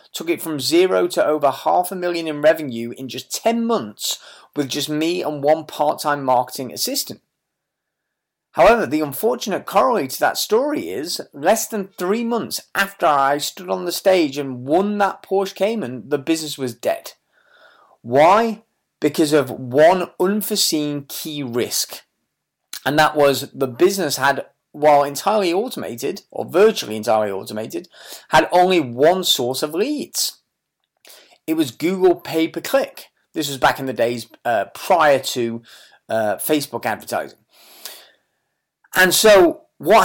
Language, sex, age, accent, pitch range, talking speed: English, male, 30-49, British, 140-195 Hz, 140 wpm